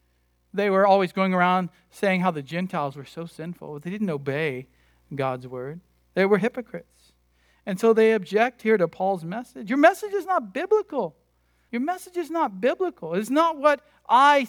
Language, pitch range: English, 140-205 Hz